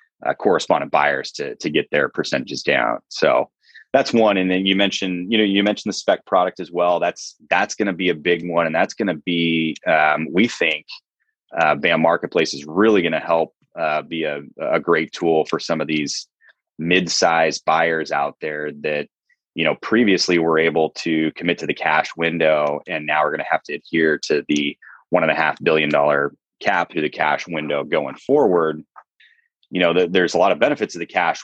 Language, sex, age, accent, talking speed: English, male, 30-49, American, 205 wpm